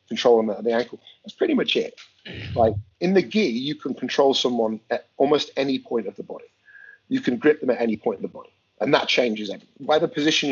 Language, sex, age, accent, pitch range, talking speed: English, male, 40-59, British, 125-175 Hz, 235 wpm